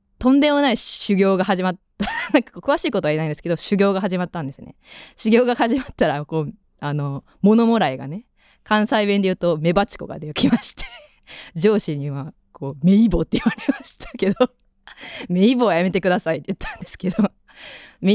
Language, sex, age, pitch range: Japanese, female, 20-39, 145-215 Hz